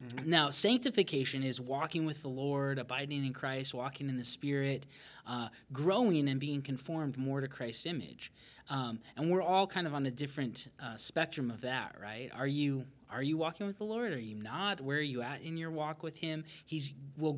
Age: 20-39